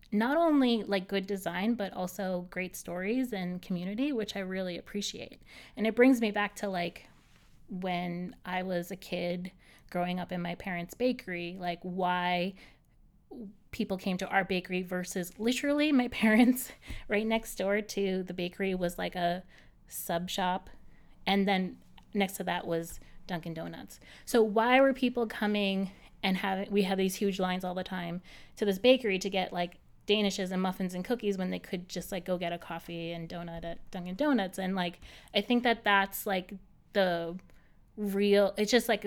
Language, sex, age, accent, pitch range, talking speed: English, female, 30-49, American, 180-205 Hz, 175 wpm